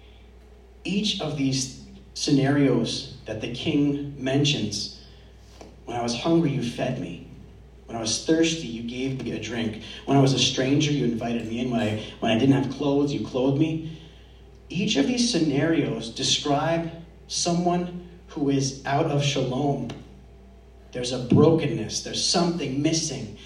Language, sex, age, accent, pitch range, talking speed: English, male, 30-49, American, 115-165 Hz, 155 wpm